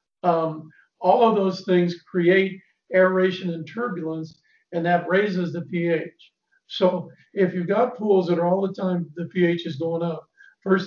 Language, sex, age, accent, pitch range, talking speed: English, male, 50-69, American, 165-195 Hz, 165 wpm